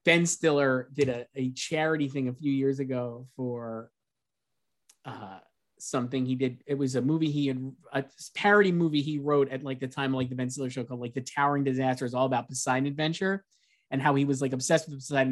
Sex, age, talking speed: male, 20-39, 215 wpm